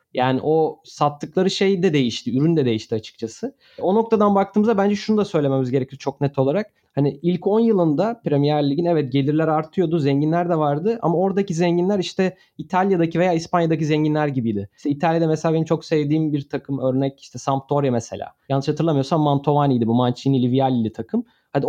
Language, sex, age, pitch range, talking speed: Turkish, male, 30-49, 140-190 Hz, 170 wpm